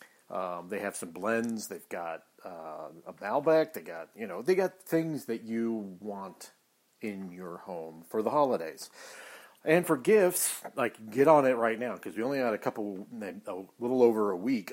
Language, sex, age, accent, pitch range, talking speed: English, male, 40-59, American, 100-135 Hz, 185 wpm